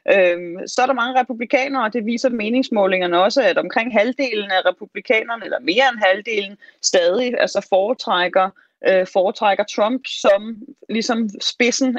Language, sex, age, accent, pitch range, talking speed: Danish, female, 30-49, native, 195-250 Hz, 125 wpm